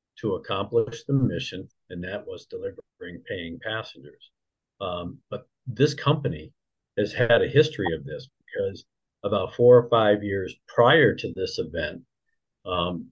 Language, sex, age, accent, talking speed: English, male, 50-69, American, 140 wpm